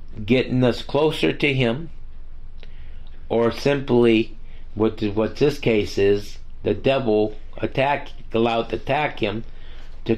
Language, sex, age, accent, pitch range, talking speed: English, male, 50-69, American, 70-115 Hz, 110 wpm